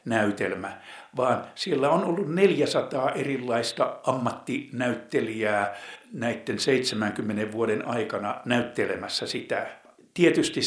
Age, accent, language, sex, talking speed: 60-79, native, Finnish, male, 80 wpm